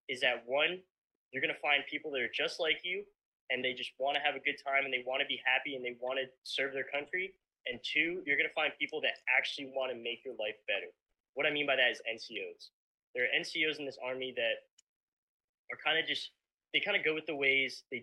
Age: 10-29